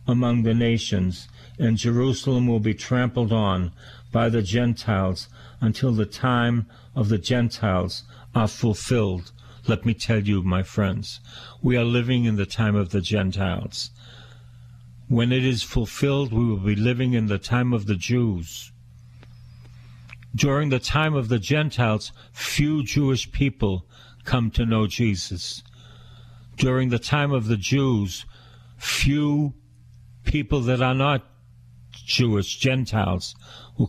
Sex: male